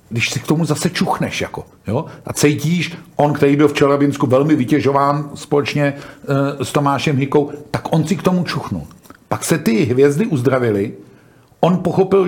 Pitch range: 140-170 Hz